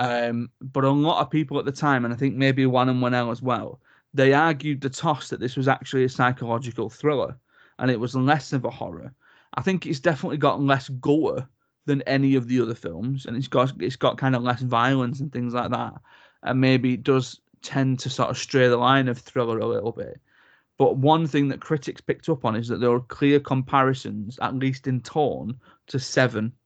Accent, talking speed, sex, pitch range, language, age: British, 220 wpm, male, 125-140 Hz, English, 30-49